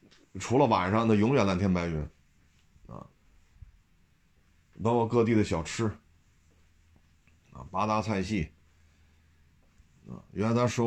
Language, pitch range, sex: Chinese, 80-110 Hz, male